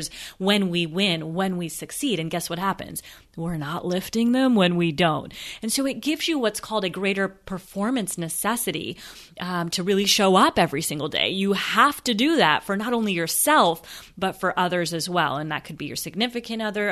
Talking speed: 200 wpm